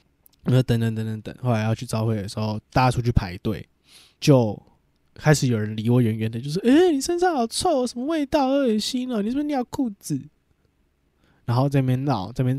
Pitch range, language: 115-160 Hz, Chinese